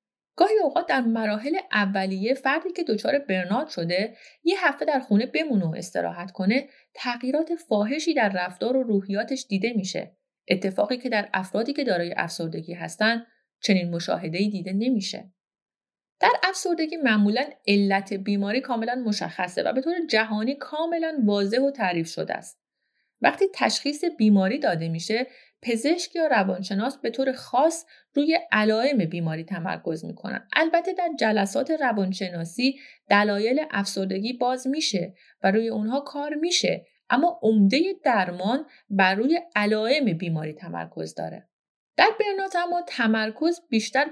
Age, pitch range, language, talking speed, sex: 30-49, 195-285 Hz, Persian, 135 wpm, female